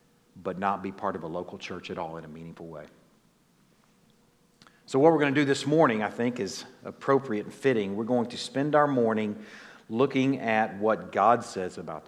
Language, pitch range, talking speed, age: English, 105-140 Hz, 200 wpm, 50-69